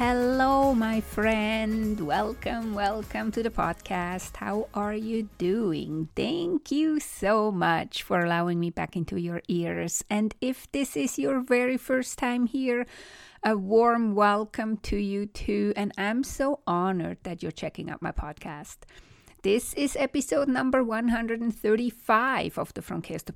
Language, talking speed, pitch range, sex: English, 150 wpm, 205-275 Hz, female